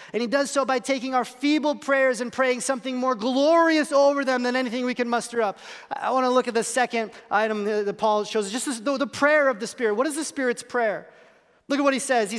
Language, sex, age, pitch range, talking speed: English, male, 30-49, 175-260 Hz, 240 wpm